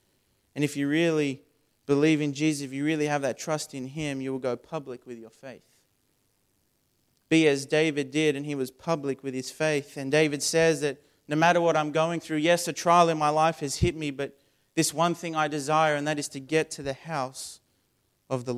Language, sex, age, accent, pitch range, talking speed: English, male, 30-49, Australian, 135-160 Hz, 220 wpm